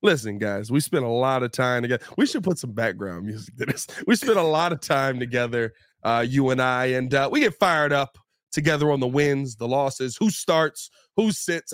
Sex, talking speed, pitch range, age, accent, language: male, 225 wpm, 130-190 Hz, 30-49, American, English